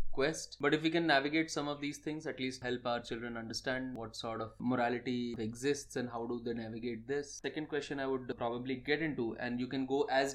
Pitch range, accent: 120-140 Hz, Indian